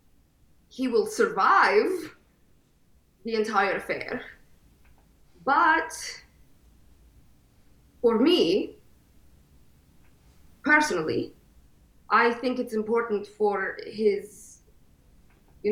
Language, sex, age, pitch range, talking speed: English, female, 20-39, 195-260 Hz, 65 wpm